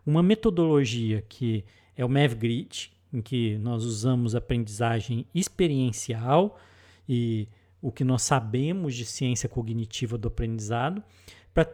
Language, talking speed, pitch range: Portuguese, 120 wpm, 115-170 Hz